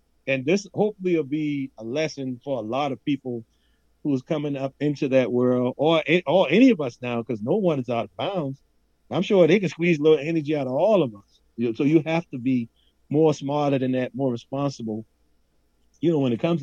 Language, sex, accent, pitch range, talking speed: English, male, American, 125-155 Hz, 220 wpm